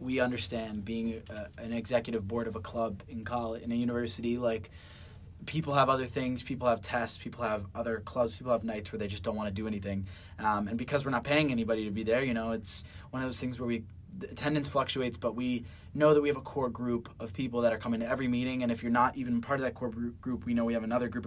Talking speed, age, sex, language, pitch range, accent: 260 wpm, 20-39, male, English, 105-125 Hz, American